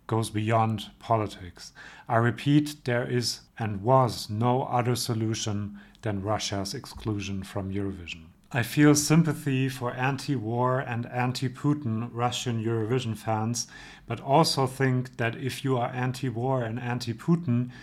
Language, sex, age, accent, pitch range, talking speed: English, male, 40-59, German, 110-130 Hz, 125 wpm